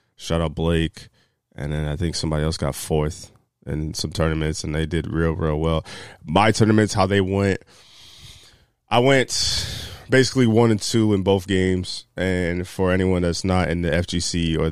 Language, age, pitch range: English, 20-39, 80-95 Hz